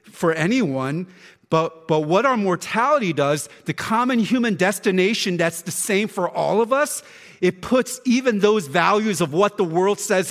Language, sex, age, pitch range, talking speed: English, male, 40-59, 125-190 Hz, 170 wpm